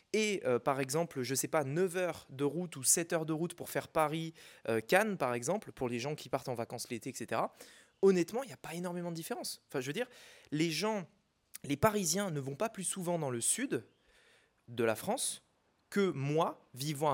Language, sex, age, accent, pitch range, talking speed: French, male, 20-39, French, 140-190 Hz, 215 wpm